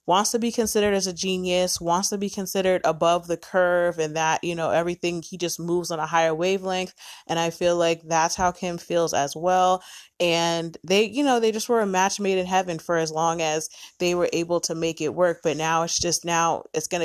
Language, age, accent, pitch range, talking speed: English, 20-39, American, 165-185 Hz, 230 wpm